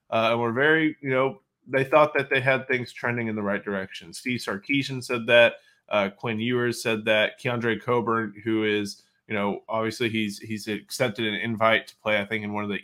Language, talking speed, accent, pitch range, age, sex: English, 215 wpm, American, 105-125 Hz, 20-39, male